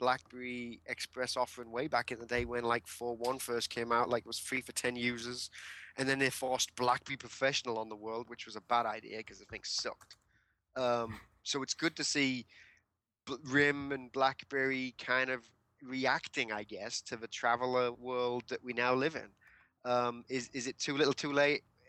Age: 20-39